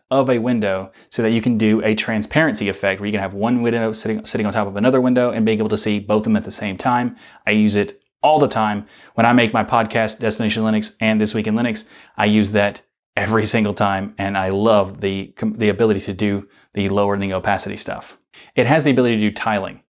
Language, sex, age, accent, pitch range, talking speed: English, male, 30-49, American, 100-115 Hz, 240 wpm